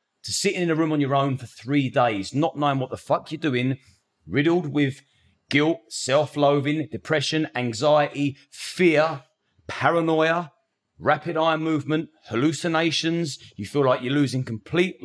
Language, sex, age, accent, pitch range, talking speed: English, male, 30-49, British, 115-155 Hz, 145 wpm